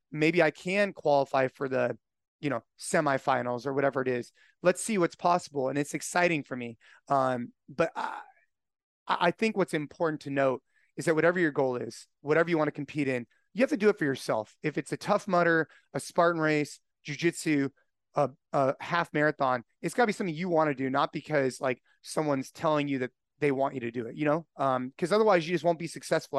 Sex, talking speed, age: male, 215 wpm, 30-49